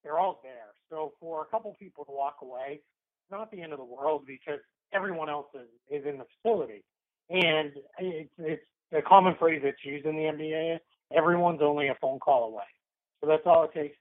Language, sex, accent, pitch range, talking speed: English, male, American, 140-170 Hz, 200 wpm